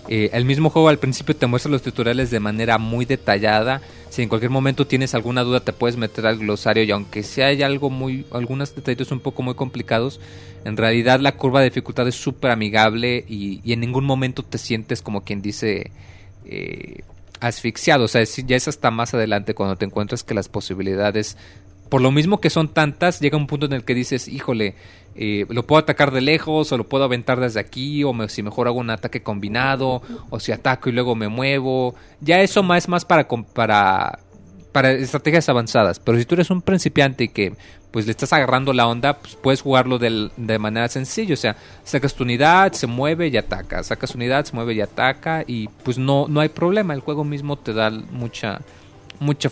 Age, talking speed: 30-49, 210 wpm